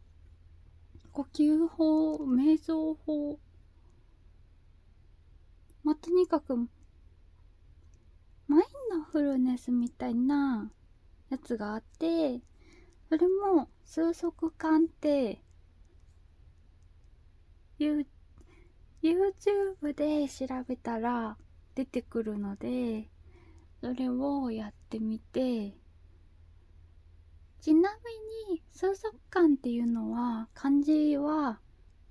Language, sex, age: Japanese, female, 20-39